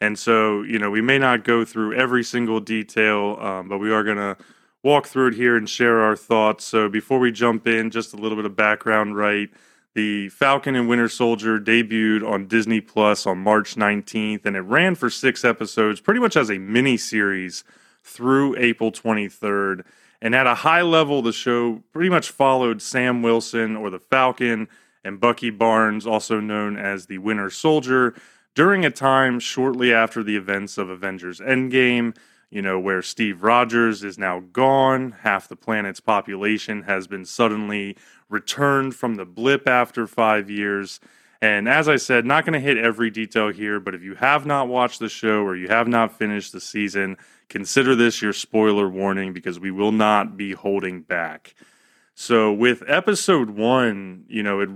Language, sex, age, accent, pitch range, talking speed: English, male, 30-49, American, 100-120 Hz, 180 wpm